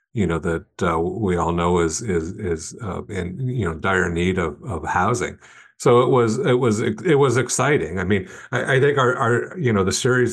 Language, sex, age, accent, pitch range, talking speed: English, male, 50-69, American, 90-105 Hz, 220 wpm